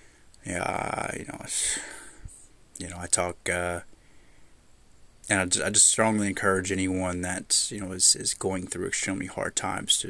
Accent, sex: American, male